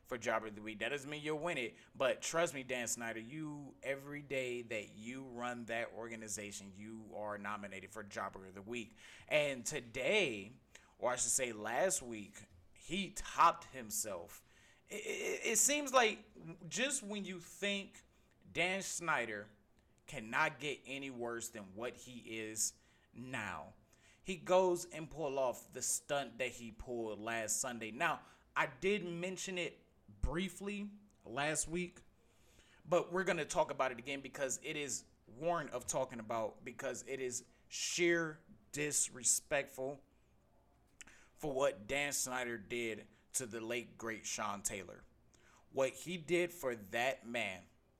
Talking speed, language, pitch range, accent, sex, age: 150 wpm, English, 115-175 Hz, American, male, 30-49